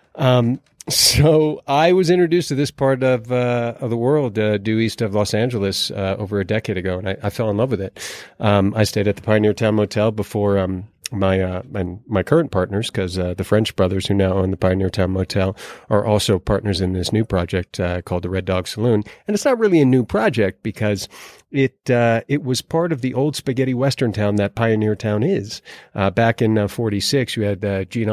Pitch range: 100-120 Hz